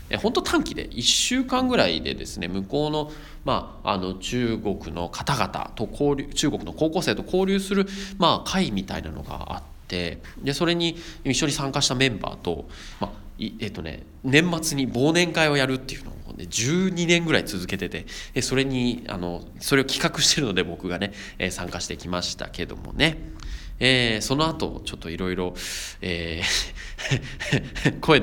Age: 20-39